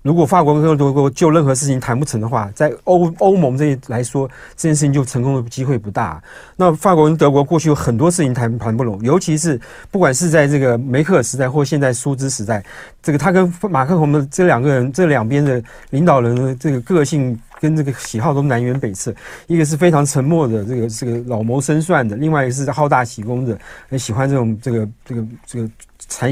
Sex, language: male, Chinese